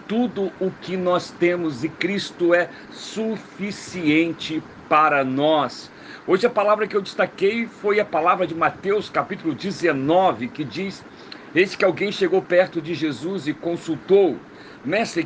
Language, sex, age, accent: Portuguese, male, 50-69, Brazilian